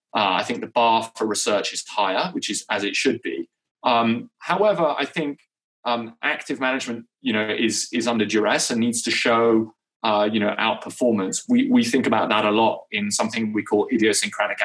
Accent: British